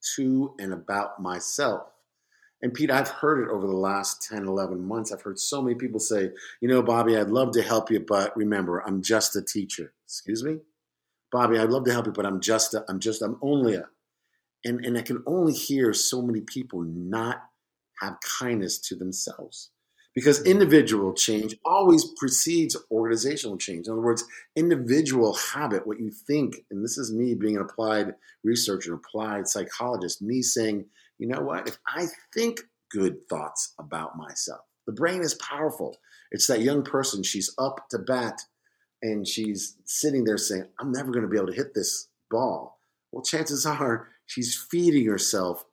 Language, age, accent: English, 50-69, American